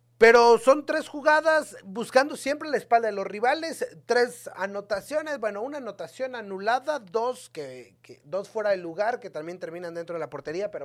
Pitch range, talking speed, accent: 160-235 Hz, 175 wpm, Mexican